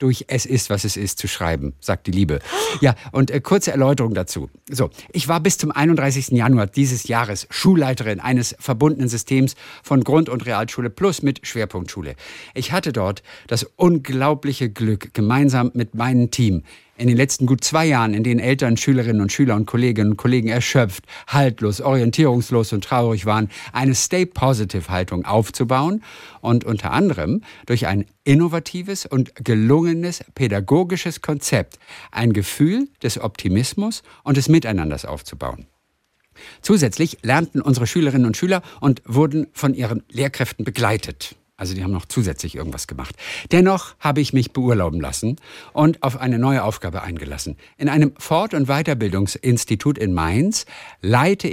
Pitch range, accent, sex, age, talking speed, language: 105-145 Hz, German, male, 50-69, 150 wpm, German